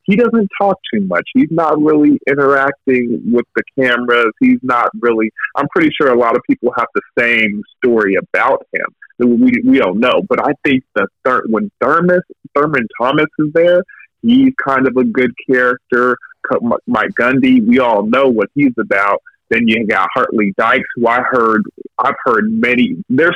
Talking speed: 180 wpm